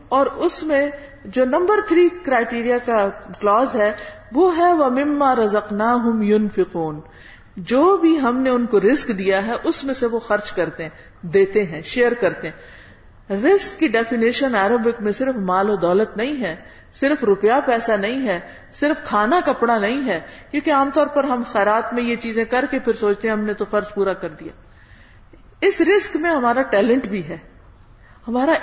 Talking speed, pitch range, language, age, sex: 180 wpm, 205-300 Hz, Urdu, 50-69, female